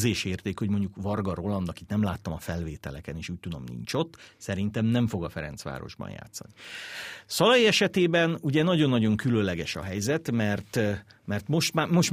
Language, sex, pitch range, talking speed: Hungarian, male, 95-130 Hz, 160 wpm